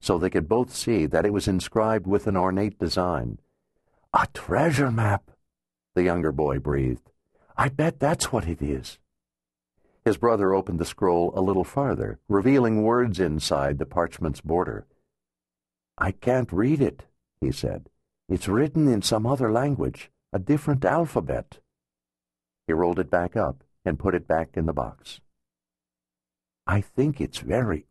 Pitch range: 70-105 Hz